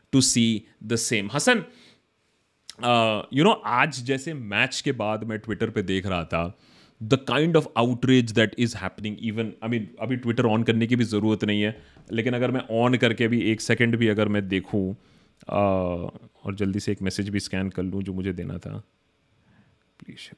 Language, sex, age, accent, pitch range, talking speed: Hindi, male, 30-49, native, 100-125 Hz, 185 wpm